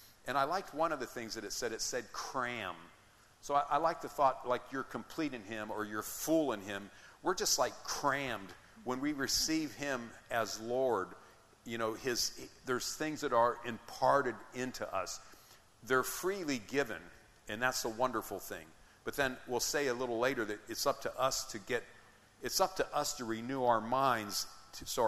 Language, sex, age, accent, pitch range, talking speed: English, male, 50-69, American, 105-130 Hz, 195 wpm